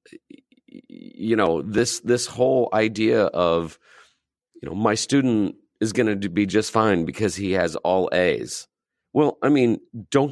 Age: 40-59